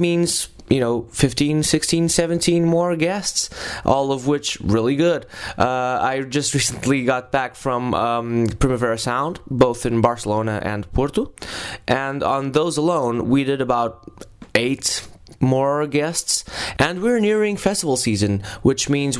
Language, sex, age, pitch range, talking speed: English, male, 20-39, 110-145 Hz, 140 wpm